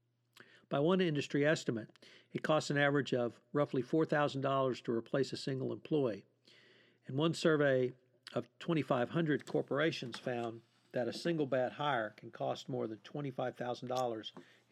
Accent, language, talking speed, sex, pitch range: American, English, 135 wpm, male, 120-150 Hz